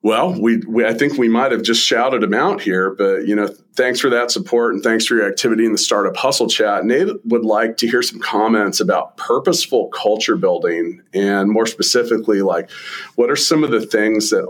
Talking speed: 215 wpm